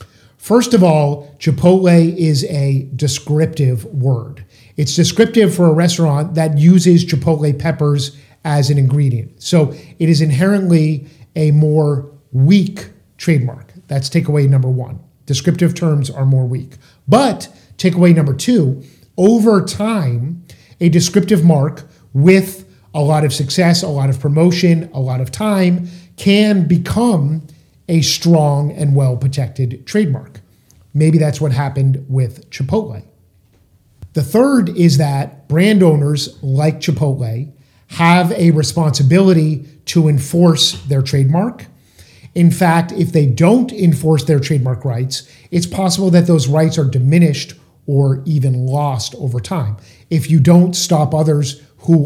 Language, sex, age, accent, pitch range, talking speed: English, male, 50-69, American, 135-170 Hz, 135 wpm